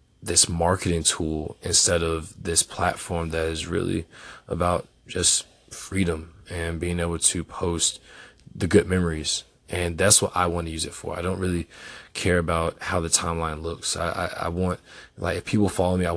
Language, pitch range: English, 80-90 Hz